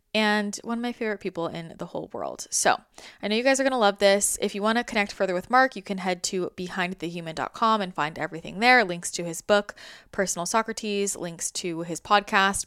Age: 20-39